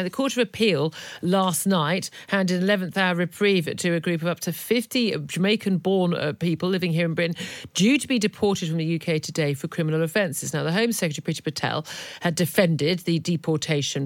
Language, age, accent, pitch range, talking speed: English, 50-69, British, 160-200 Hz, 195 wpm